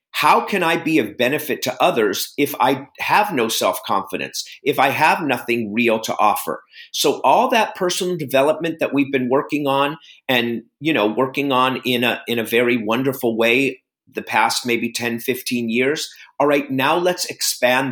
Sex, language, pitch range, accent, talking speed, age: male, English, 120-160 Hz, American, 175 wpm, 50-69